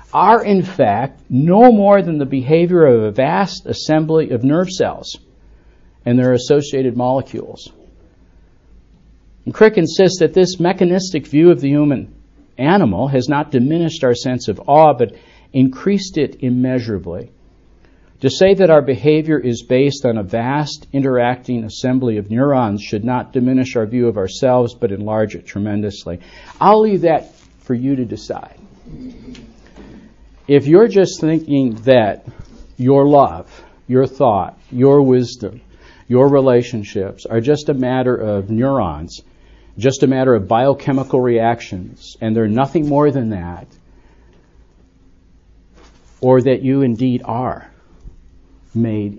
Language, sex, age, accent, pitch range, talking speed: English, male, 60-79, American, 110-140 Hz, 135 wpm